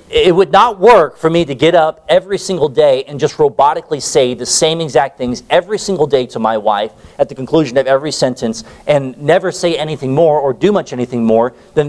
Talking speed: 215 wpm